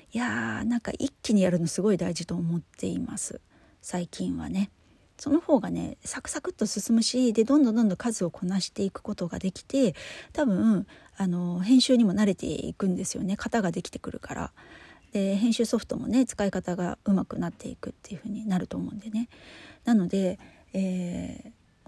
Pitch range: 180-235 Hz